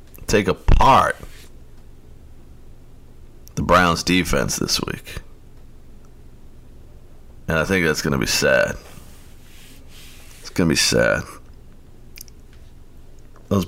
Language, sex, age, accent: English, male, 50-69, American